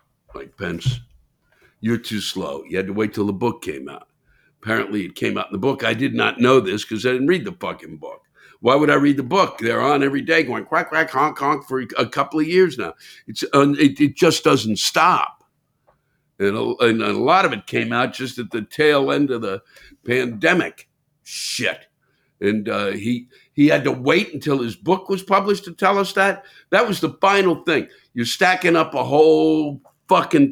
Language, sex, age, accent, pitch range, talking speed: English, male, 60-79, American, 125-165 Hz, 205 wpm